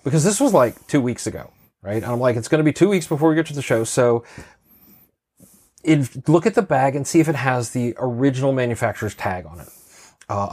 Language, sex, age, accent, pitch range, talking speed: English, male, 30-49, American, 115-140 Hz, 235 wpm